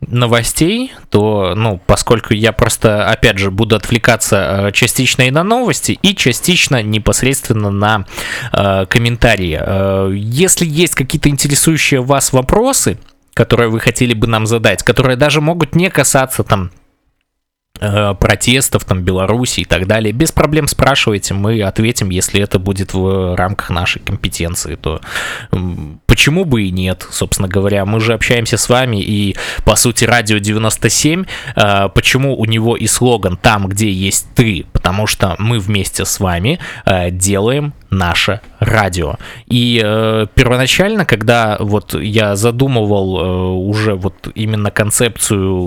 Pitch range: 95-125 Hz